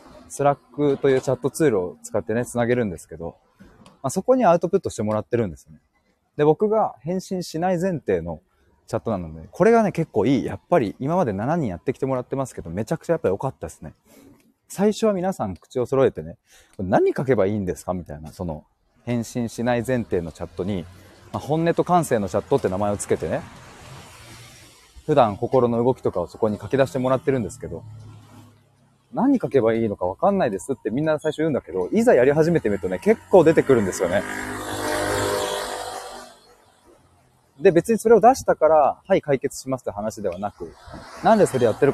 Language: Japanese